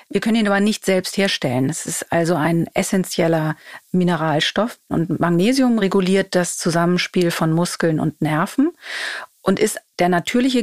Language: German